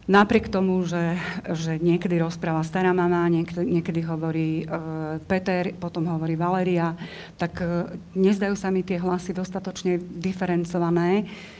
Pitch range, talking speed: 170-185 Hz, 125 wpm